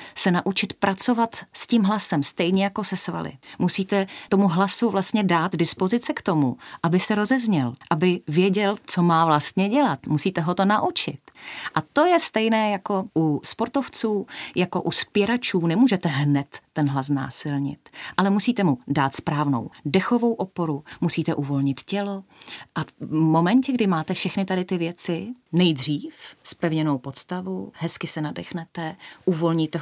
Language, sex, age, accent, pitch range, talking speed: Czech, female, 30-49, native, 165-215 Hz, 145 wpm